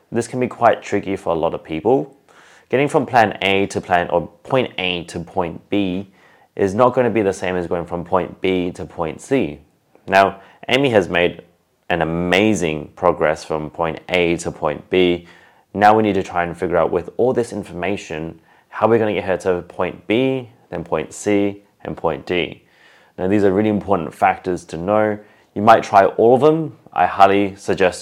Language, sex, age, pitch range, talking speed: English, male, 30-49, 85-105 Hz, 200 wpm